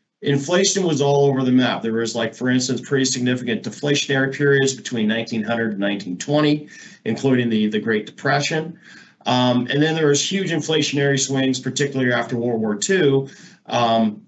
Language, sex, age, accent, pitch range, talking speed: English, male, 40-59, American, 115-145 Hz, 160 wpm